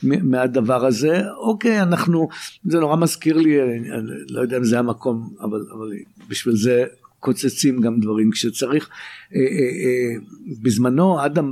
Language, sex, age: Hebrew, male, 60-79